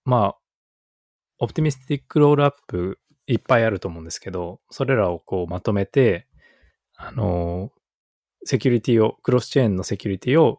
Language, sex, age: Japanese, male, 20-39